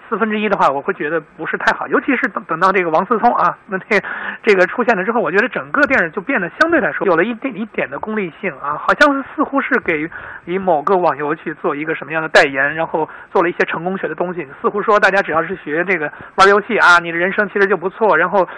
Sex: male